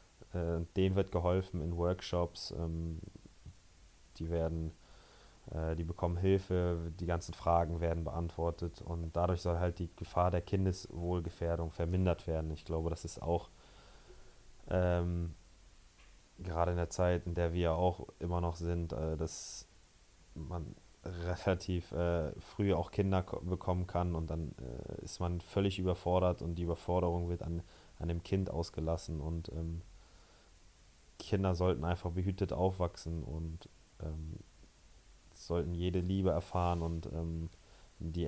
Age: 20-39